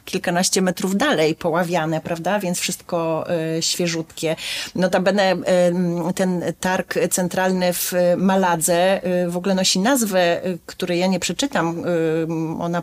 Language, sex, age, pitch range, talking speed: Polish, female, 30-49, 165-185 Hz, 110 wpm